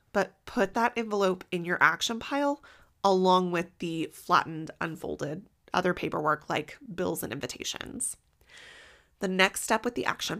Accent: American